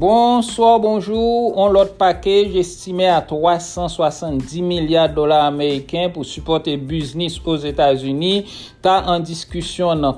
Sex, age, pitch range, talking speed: male, 60-79, 150-175 Hz, 125 wpm